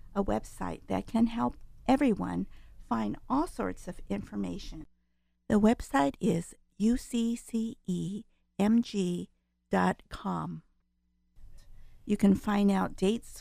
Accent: American